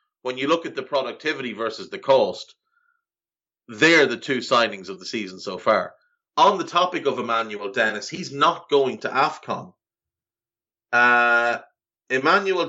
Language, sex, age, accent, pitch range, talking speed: English, male, 30-49, Irish, 115-150 Hz, 145 wpm